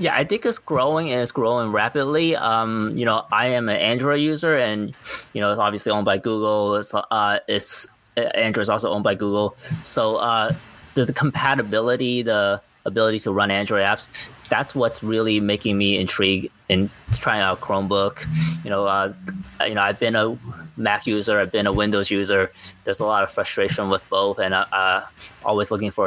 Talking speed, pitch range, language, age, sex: 195 wpm, 100-130 Hz, English, 20-39, male